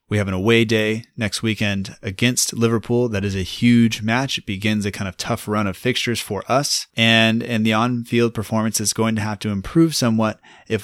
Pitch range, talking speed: 100-115 Hz, 210 wpm